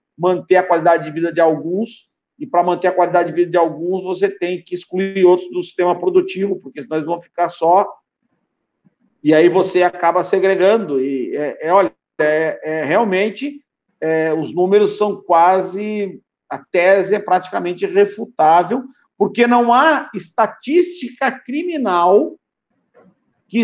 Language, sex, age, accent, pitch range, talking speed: Portuguese, male, 50-69, Brazilian, 180-255 Hz, 135 wpm